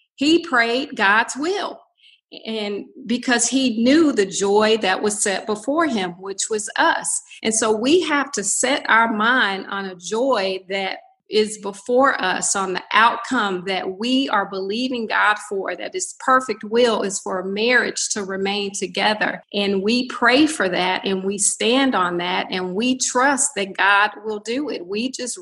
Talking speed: 170 wpm